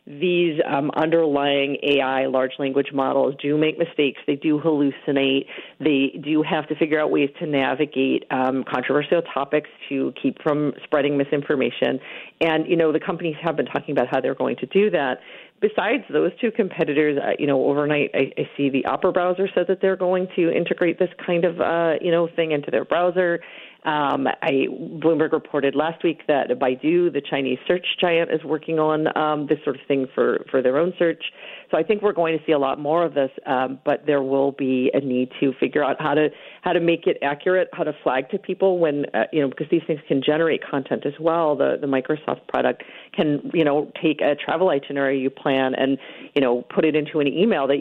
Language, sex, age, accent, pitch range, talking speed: English, female, 40-59, American, 140-165 Hz, 210 wpm